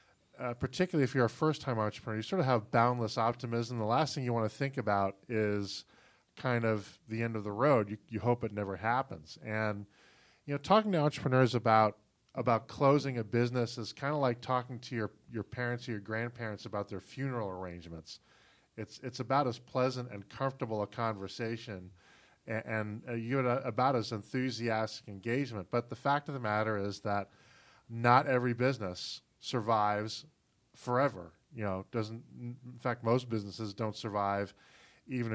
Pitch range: 105-125 Hz